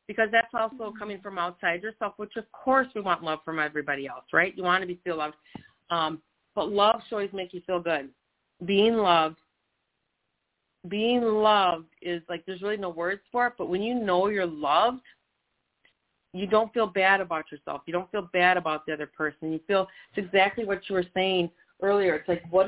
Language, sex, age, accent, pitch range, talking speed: English, female, 40-59, American, 165-200 Hz, 200 wpm